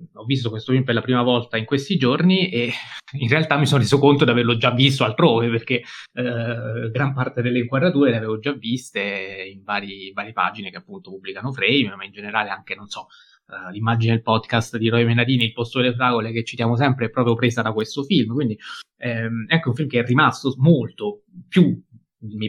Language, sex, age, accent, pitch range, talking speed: Italian, male, 20-39, native, 115-135 Hz, 205 wpm